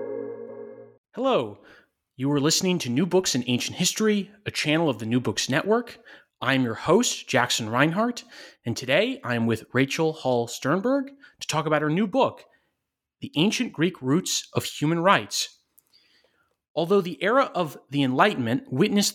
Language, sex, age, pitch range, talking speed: English, male, 30-49, 130-200 Hz, 160 wpm